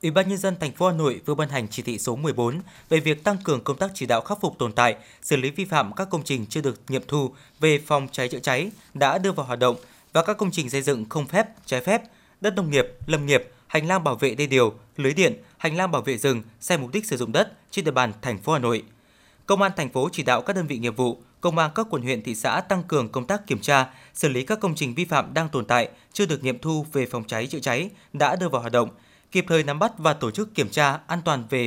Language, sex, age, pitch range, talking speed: Vietnamese, male, 20-39, 130-180 Hz, 280 wpm